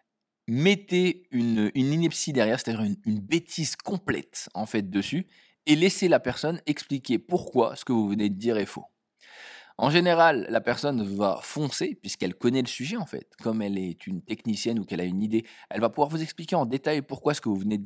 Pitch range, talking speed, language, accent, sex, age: 105-150 Hz, 210 wpm, French, French, male, 20-39